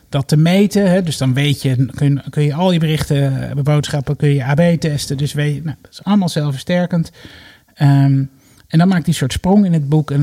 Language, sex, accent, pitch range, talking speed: Dutch, male, Dutch, 130-145 Hz, 240 wpm